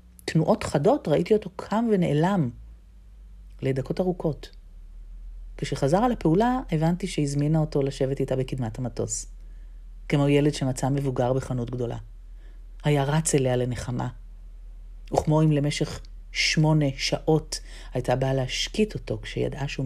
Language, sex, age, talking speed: Hebrew, female, 40-59, 120 wpm